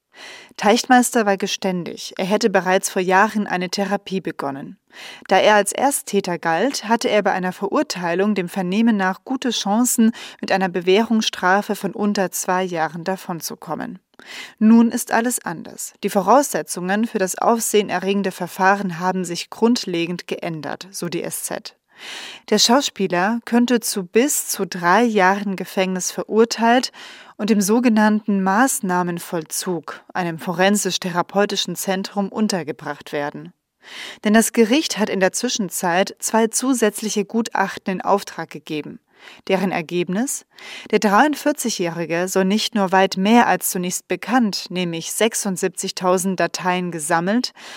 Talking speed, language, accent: 125 wpm, German, German